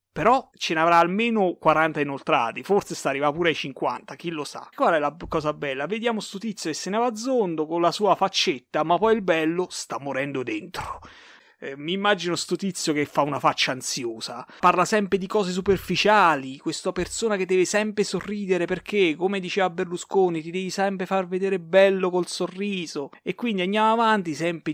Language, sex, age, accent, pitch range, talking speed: Italian, male, 30-49, native, 150-190 Hz, 190 wpm